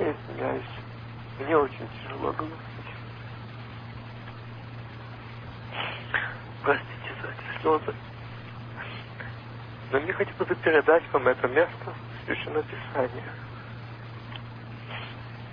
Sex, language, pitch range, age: male, Russian, 115-120 Hz, 60-79